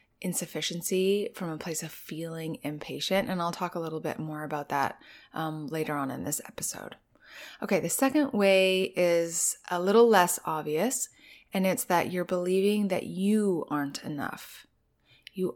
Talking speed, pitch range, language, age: 160 wpm, 165-220 Hz, English, 20-39